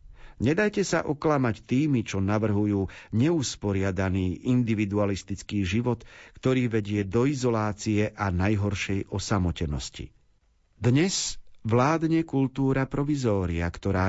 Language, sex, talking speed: Slovak, male, 90 wpm